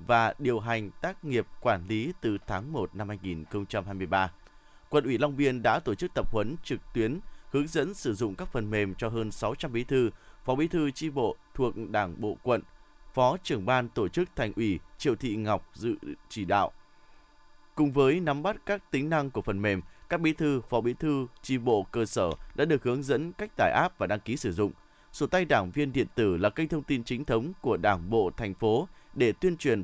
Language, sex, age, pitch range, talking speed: Vietnamese, male, 20-39, 110-150 Hz, 220 wpm